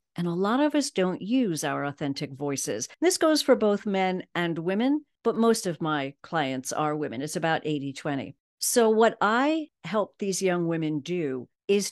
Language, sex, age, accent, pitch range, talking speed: English, female, 50-69, American, 155-205 Hz, 180 wpm